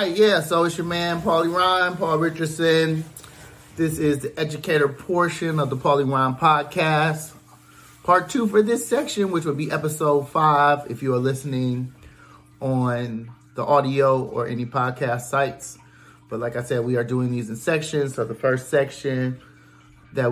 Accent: American